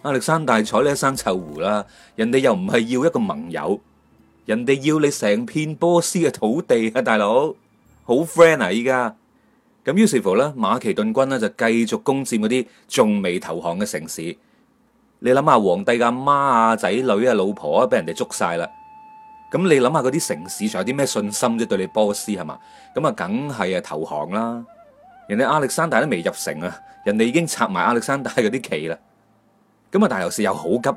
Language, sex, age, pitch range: Chinese, male, 30-49, 120-195 Hz